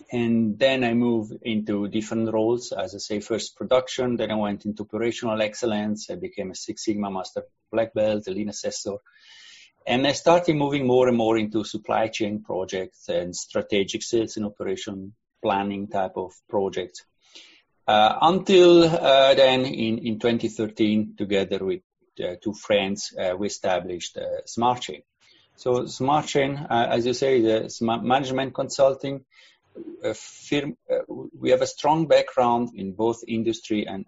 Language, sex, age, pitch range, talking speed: English, male, 30-49, 105-125 Hz, 155 wpm